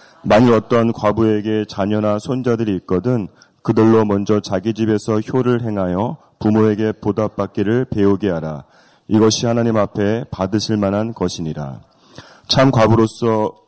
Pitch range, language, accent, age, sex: 105-120 Hz, Korean, native, 30-49, male